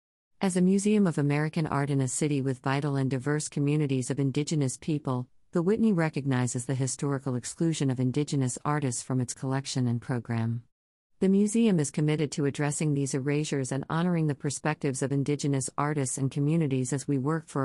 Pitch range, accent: 130-160 Hz, American